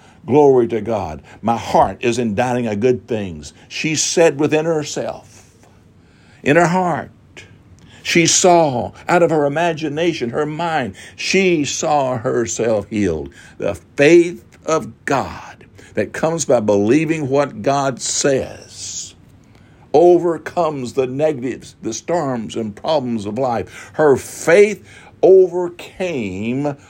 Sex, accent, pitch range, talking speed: male, American, 115-150 Hz, 115 wpm